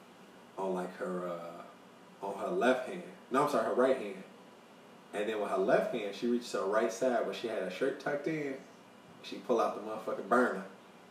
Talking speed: 210 wpm